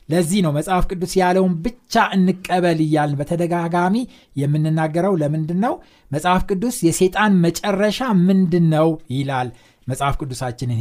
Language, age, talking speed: Amharic, 60-79, 110 wpm